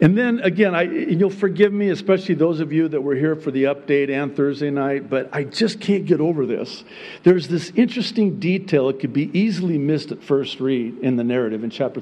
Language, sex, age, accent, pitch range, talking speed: Spanish, male, 50-69, American, 155-220 Hz, 220 wpm